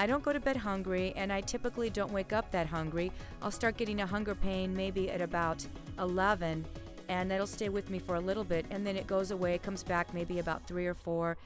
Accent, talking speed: American, 240 wpm